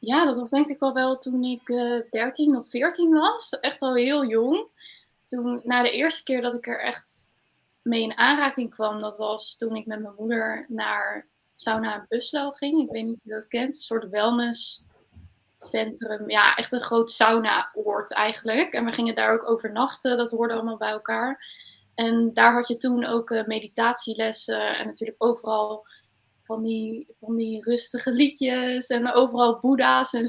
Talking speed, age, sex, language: 180 wpm, 20-39, female, Dutch